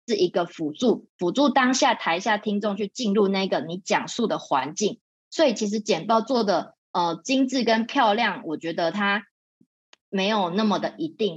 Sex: female